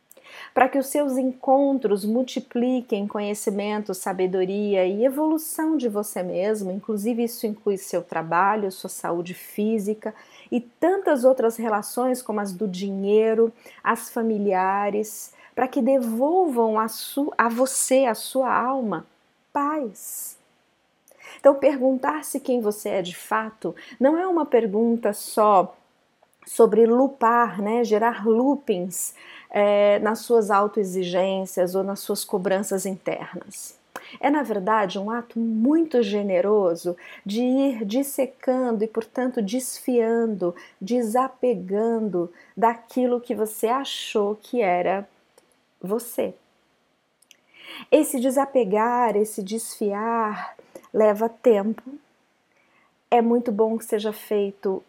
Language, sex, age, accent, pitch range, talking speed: Portuguese, female, 40-59, Brazilian, 205-255 Hz, 110 wpm